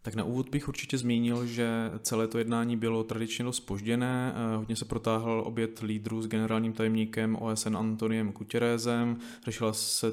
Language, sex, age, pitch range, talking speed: Czech, male, 20-39, 105-115 Hz, 160 wpm